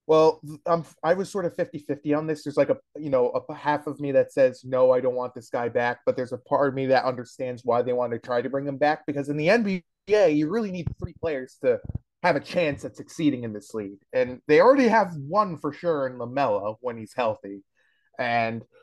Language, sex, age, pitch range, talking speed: English, male, 30-49, 130-200 Hz, 240 wpm